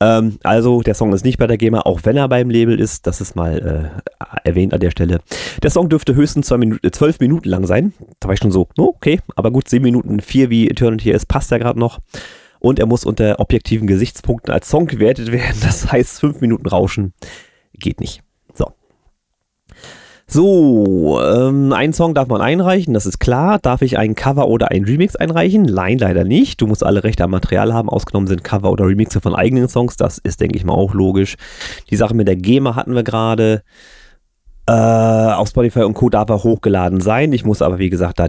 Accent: German